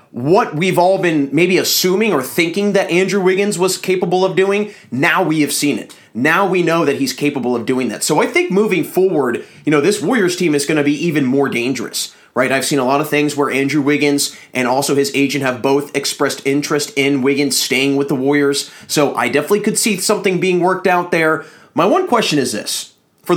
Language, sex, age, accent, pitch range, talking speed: English, male, 30-49, American, 140-180 Hz, 220 wpm